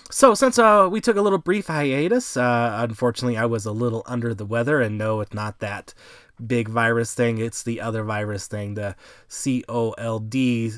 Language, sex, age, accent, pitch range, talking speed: English, male, 20-39, American, 110-140 Hz, 185 wpm